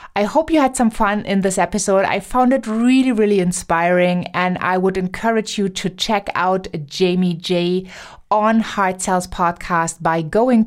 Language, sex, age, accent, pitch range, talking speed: English, female, 20-39, German, 175-215 Hz, 175 wpm